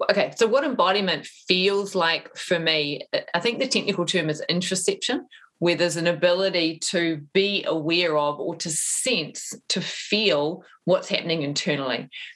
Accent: Australian